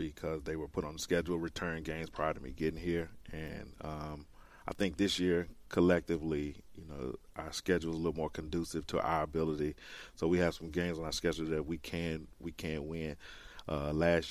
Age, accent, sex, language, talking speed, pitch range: 40-59, American, male, English, 210 wpm, 75-85 Hz